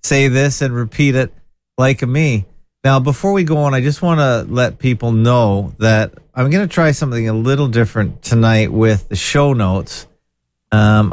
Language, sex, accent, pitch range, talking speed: English, male, American, 100-135 Hz, 185 wpm